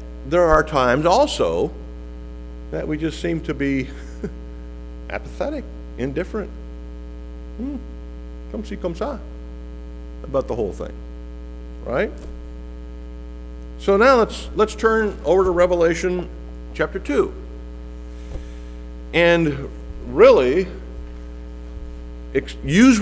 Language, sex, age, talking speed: English, male, 50-69, 90 wpm